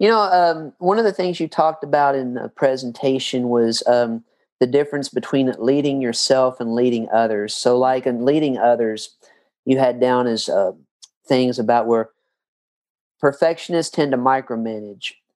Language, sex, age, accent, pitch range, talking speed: English, male, 40-59, American, 120-145 Hz, 155 wpm